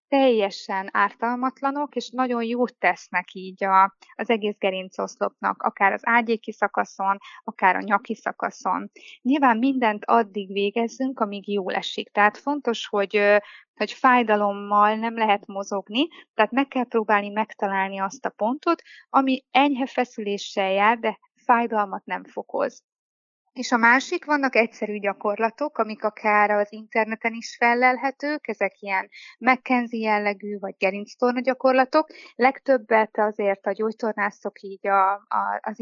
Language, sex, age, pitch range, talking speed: Hungarian, female, 20-39, 205-250 Hz, 125 wpm